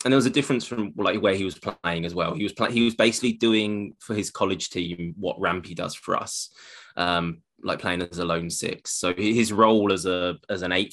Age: 20-39